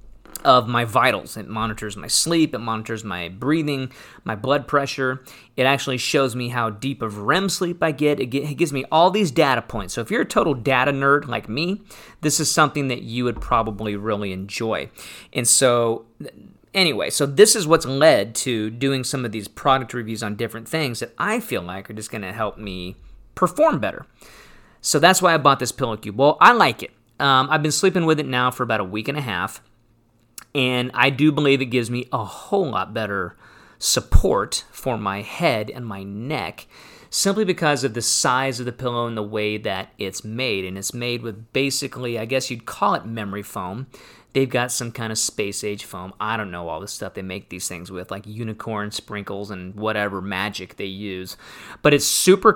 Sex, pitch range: male, 110-145 Hz